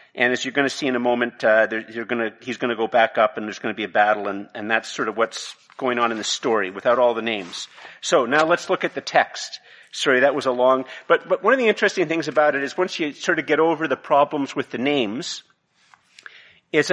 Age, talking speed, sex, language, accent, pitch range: 50-69, 265 wpm, male, English, American, 120-155 Hz